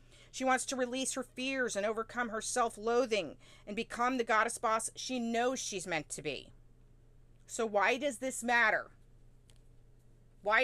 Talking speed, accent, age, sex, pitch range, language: 150 wpm, American, 40-59, female, 170-245 Hz, English